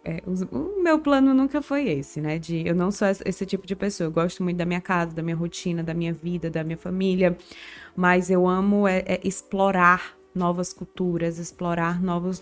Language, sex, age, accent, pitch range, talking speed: Portuguese, female, 20-39, Brazilian, 180-215 Hz, 180 wpm